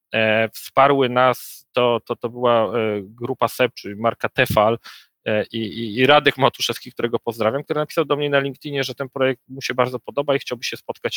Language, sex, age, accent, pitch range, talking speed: Polish, male, 40-59, native, 115-140 Hz, 185 wpm